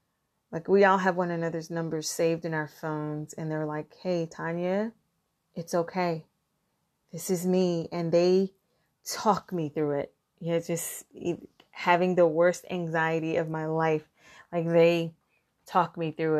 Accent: American